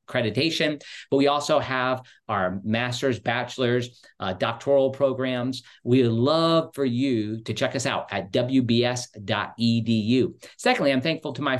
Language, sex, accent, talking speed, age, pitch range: English, male, American, 140 wpm, 50-69, 120-160 Hz